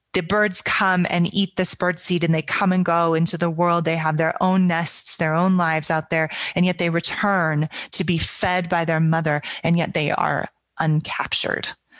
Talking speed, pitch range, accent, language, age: 205 wpm, 150-175 Hz, American, English, 30-49